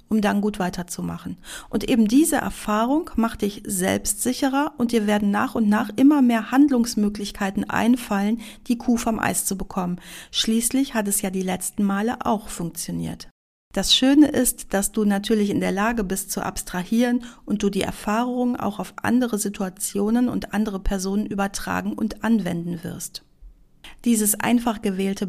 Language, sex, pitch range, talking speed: German, female, 185-225 Hz, 155 wpm